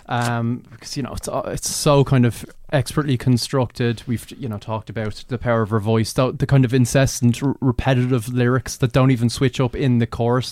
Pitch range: 115-135 Hz